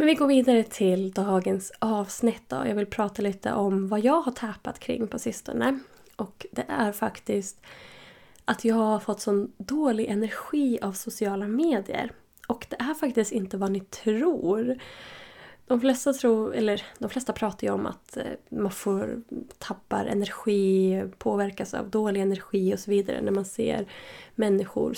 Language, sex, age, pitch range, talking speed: Swedish, female, 20-39, 205-250 Hz, 165 wpm